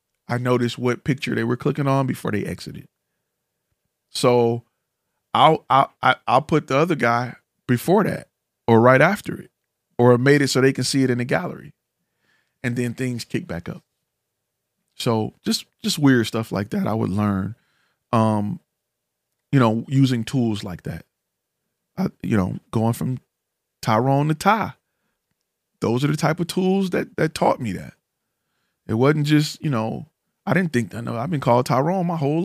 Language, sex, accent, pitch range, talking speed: English, male, American, 120-145 Hz, 170 wpm